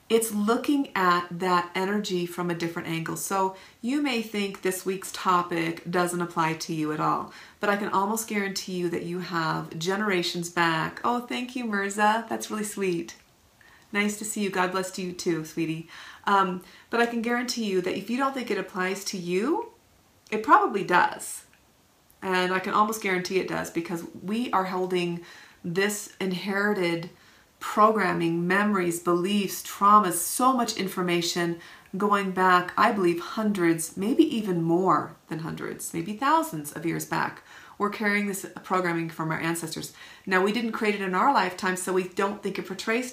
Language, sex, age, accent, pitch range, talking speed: English, female, 30-49, American, 175-205 Hz, 170 wpm